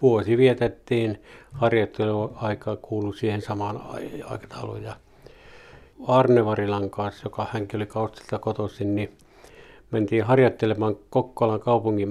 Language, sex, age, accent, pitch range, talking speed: Finnish, male, 60-79, native, 105-120 Hz, 100 wpm